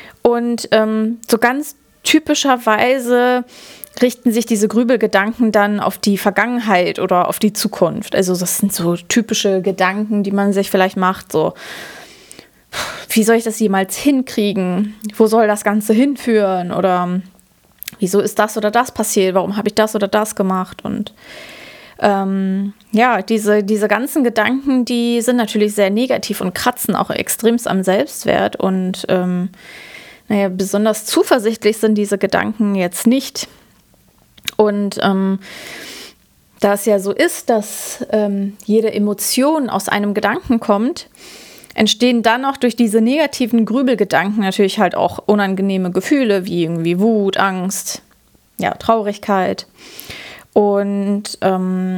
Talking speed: 135 wpm